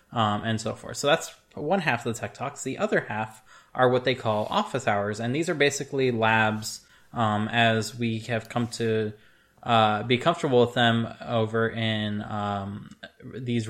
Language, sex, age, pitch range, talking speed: English, male, 20-39, 110-135 Hz, 180 wpm